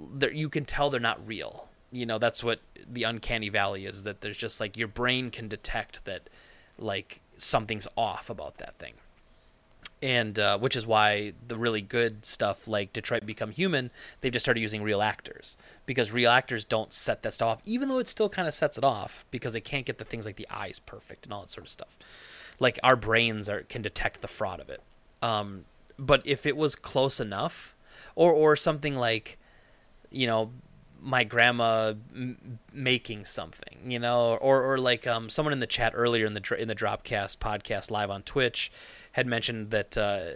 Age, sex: 30-49, male